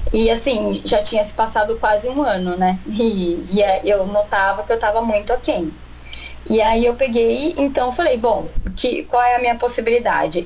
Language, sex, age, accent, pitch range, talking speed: Portuguese, female, 10-29, Brazilian, 205-265 Hz, 190 wpm